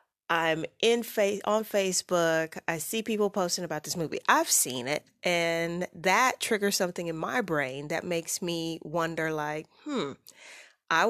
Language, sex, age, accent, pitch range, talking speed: English, female, 30-49, American, 155-185 Hz, 155 wpm